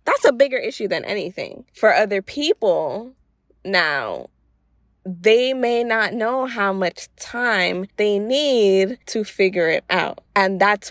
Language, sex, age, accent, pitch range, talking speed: English, female, 20-39, American, 175-225 Hz, 140 wpm